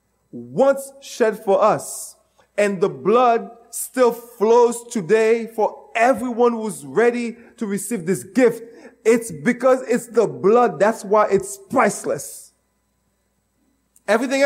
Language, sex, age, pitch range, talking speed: English, male, 30-49, 195-250 Hz, 115 wpm